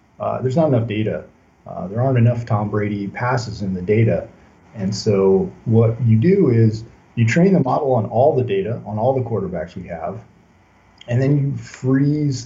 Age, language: 40-59, English